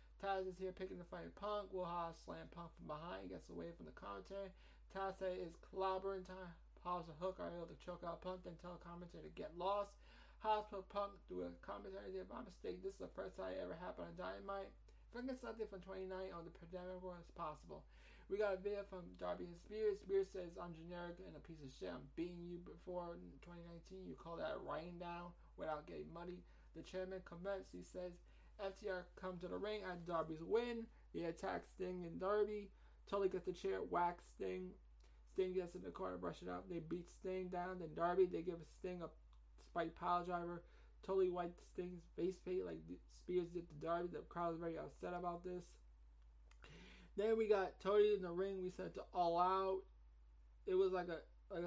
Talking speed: 215 wpm